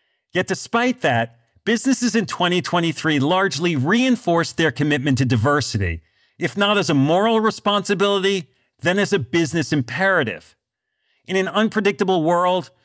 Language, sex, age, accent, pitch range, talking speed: English, male, 40-59, American, 135-190 Hz, 125 wpm